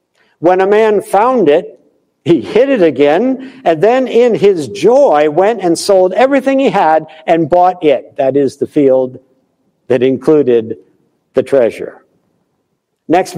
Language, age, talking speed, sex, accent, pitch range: English, 60-79, 145 wpm, male, American, 145-205 Hz